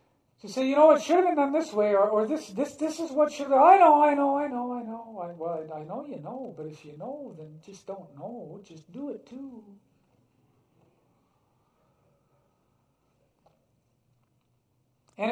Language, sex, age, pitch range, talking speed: English, male, 50-69, 160-260 Hz, 195 wpm